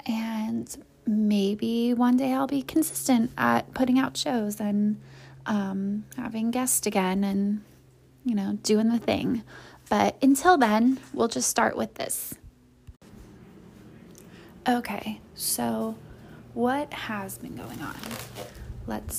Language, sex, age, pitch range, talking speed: English, female, 10-29, 195-225 Hz, 120 wpm